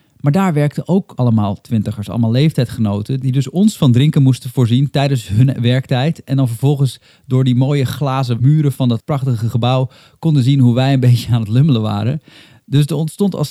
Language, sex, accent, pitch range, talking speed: Dutch, male, Dutch, 120-145 Hz, 195 wpm